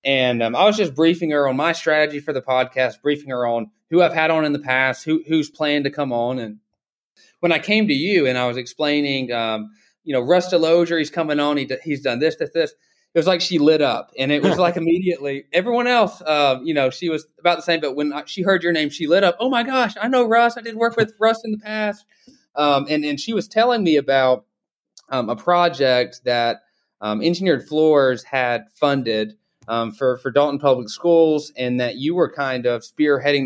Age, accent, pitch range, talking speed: 20-39, American, 130-170 Hz, 230 wpm